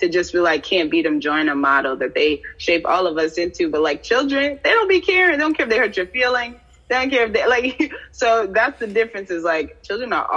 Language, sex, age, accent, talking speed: English, female, 20-39, American, 265 wpm